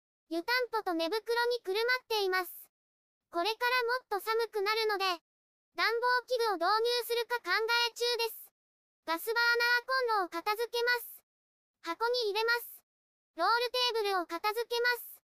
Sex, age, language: male, 20-39, Japanese